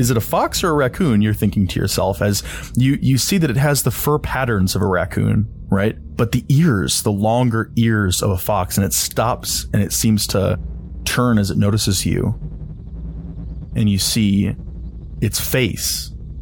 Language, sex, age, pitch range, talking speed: English, male, 20-39, 90-115 Hz, 185 wpm